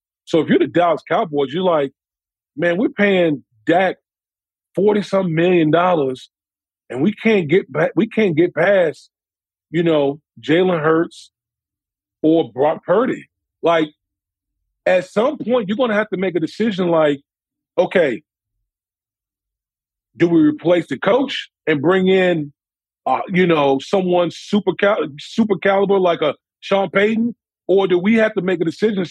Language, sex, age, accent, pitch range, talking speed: English, male, 40-59, American, 145-195 Hz, 150 wpm